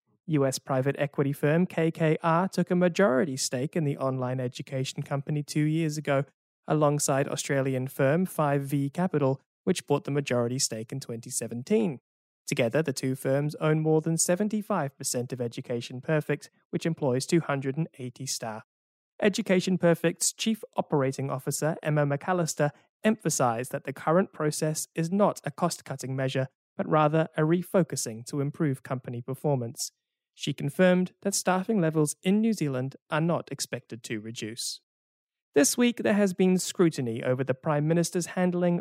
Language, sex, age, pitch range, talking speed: English, male, 20-39, 135-175 Hz, 145 wpm